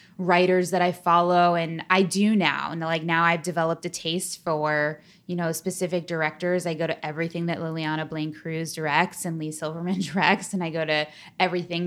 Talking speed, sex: 190 wpm, female